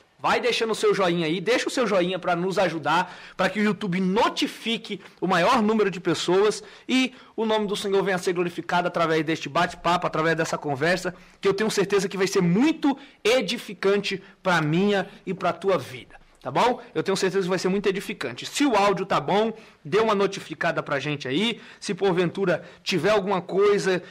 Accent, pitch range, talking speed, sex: Brazilian, 165-200 Hz, 195 wpm, male